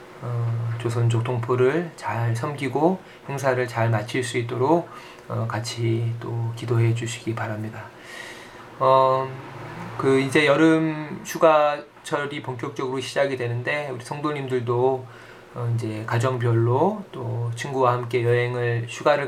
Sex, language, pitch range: male, Korean, 115-130 Hz